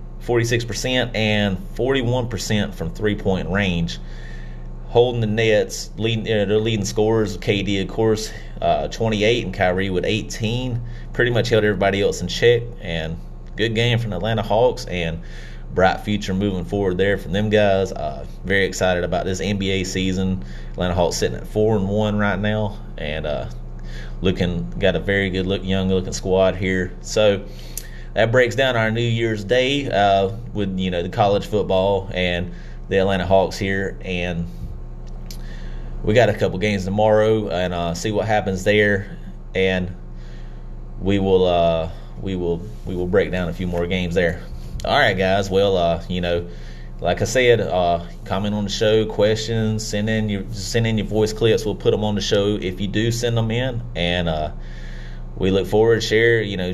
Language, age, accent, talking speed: English, 30-49, American, 175 wpm